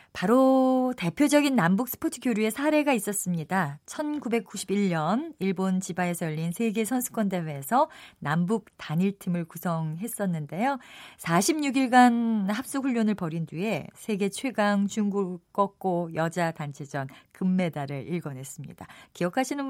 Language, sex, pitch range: Korean, female, 165-240 Hz